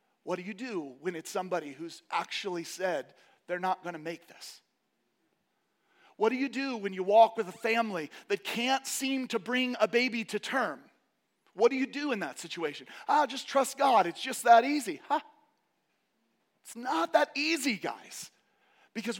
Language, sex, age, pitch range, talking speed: English, male, 40-59, 175-255 Hz, 180 wpm